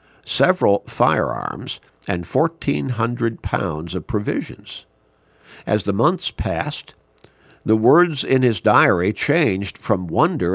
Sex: male